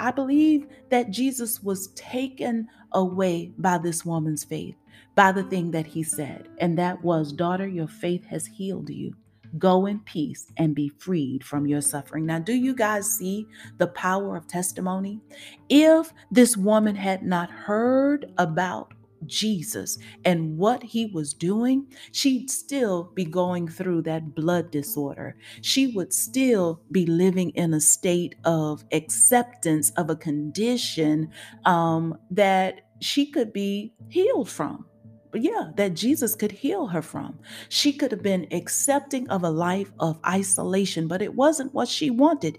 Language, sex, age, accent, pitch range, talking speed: English, female, 40-59, American, 165-235 Hz, 150 wpm